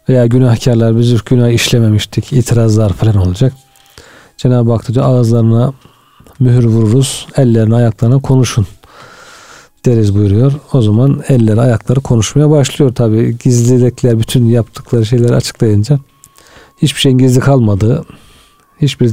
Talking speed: 110 wpm